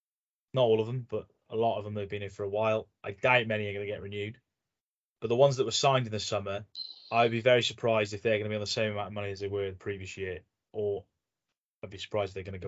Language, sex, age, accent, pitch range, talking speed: English, male, 20-39, British, 100-120 Hz, 290 wpm